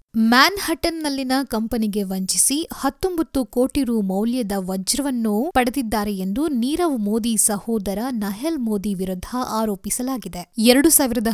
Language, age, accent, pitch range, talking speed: Kannada, 20-39, native, 210-275 Hz, 100 wpm